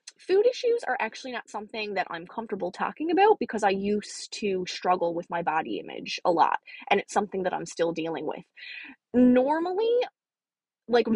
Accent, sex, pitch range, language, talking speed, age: American, female, 190-255 Hz, English, 170 wpm, 20-39